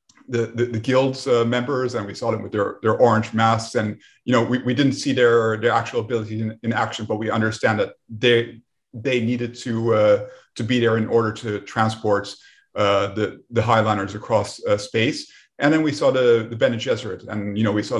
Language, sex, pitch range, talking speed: English, male, 110-130 Hz, 215 wpm